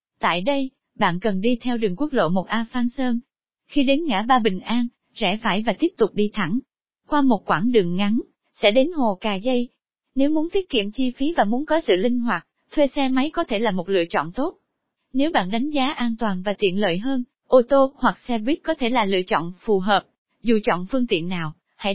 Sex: female